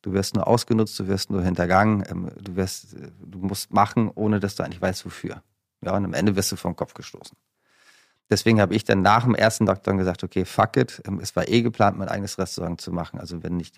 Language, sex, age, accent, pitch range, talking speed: German, male, 30-49, German, 90-105 Hz, 225 wpm